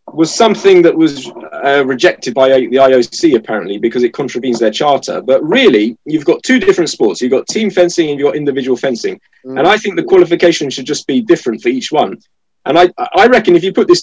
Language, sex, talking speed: English, male, 220 wpm